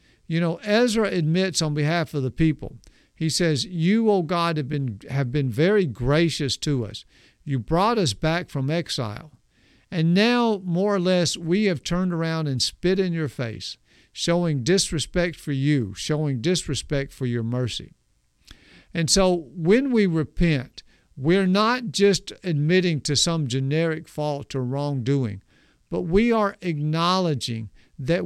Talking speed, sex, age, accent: 150 wpm, male, 50-69, American